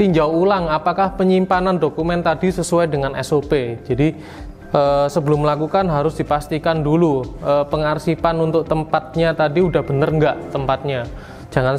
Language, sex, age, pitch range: Indonesian, male, 20-39, 135-165 Hz